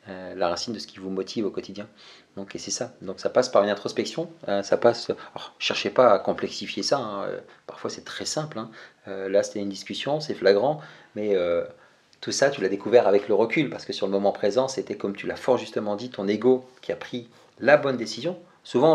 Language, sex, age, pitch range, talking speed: French, male, 40-59, 105-130 Hz, 235 wpm